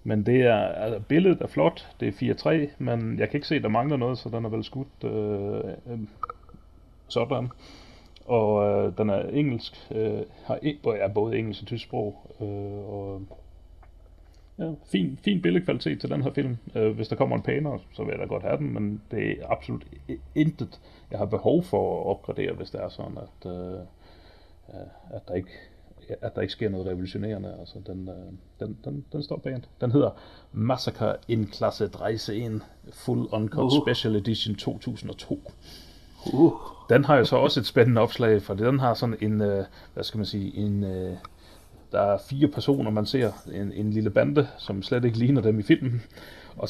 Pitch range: 100-125 Hz